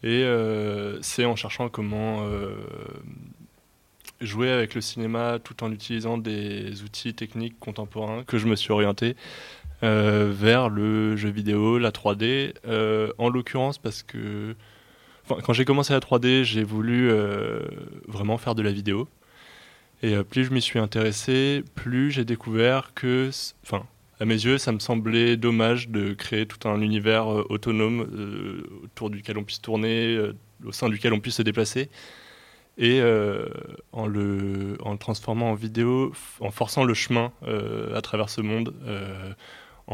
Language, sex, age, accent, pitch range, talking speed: French, male, 20-39, French, 105-120 Hz, 160 wpm